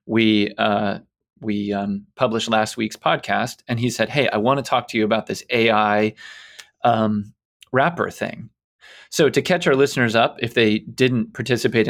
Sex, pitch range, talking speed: male, 105-125 Hz, 170 wpm